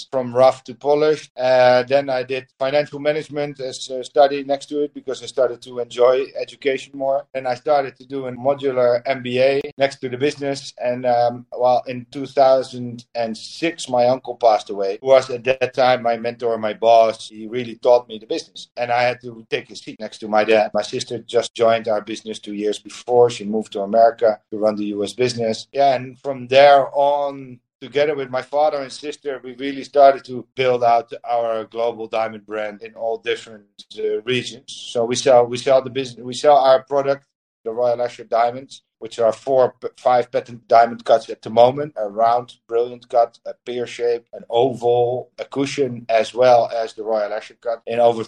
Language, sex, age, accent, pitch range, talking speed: English, male, 50-69, Dutch, 115-135 Hz, 200 wpm